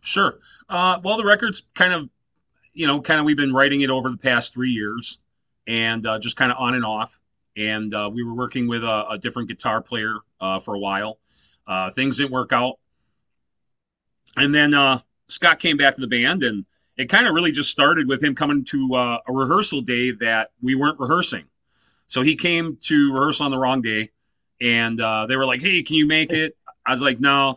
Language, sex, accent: English, male, American